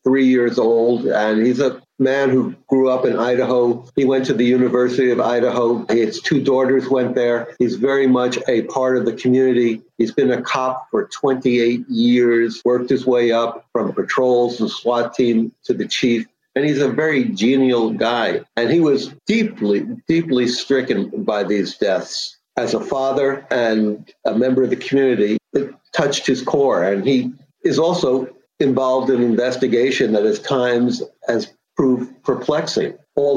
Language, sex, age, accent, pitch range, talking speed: English, male, 60-79, American, 120-135 Hz, 170 wpm